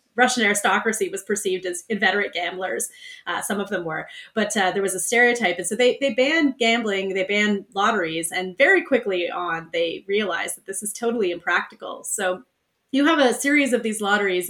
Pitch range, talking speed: 190-245 Hz, 190 wpm